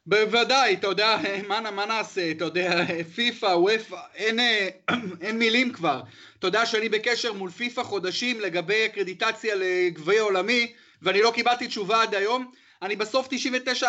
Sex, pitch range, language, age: male, 185-240 Hz, Hebrew, 30-49